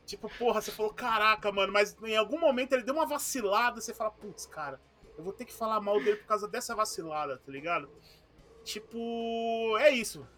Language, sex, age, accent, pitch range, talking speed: Portuguese, male, 30-49, Brazilian, 160-230 Hz, 195 wpm